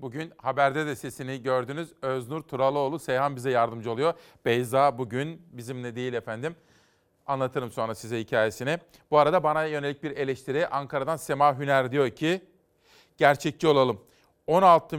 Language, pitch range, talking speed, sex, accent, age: Turkish, 135-160 Hz, 135 wpm, male, native, 40-59